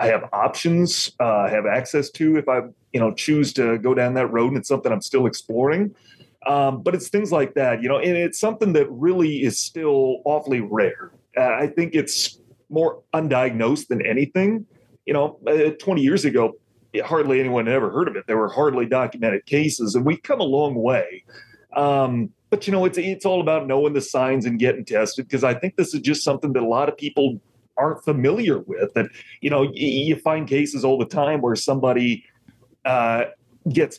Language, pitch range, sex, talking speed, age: English, 125-155 Hz, male, 205 wpm, 30-49